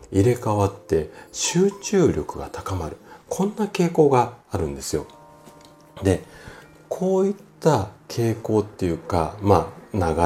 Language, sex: Japanese, male